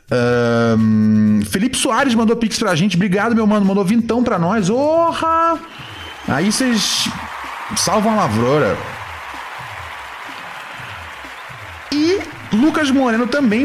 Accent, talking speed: Brazilian, 105 wpm